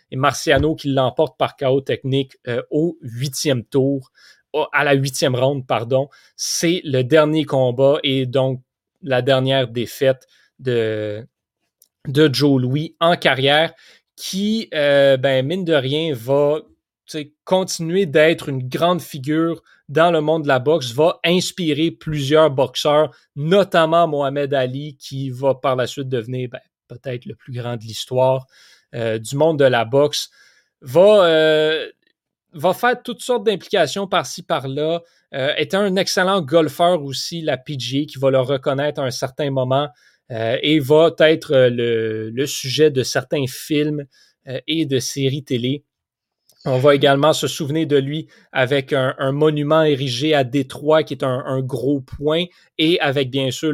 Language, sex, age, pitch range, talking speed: French, male, 30-49, 130-155 Hz, 155 wpm